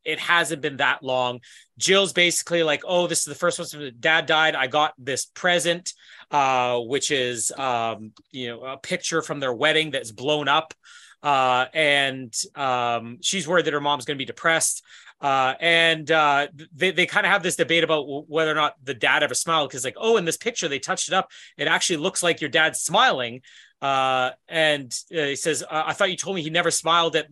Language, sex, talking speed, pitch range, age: English, male, 210 wpm, 135-170 Hz, 30-49